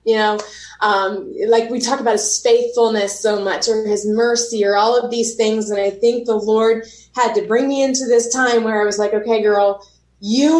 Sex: female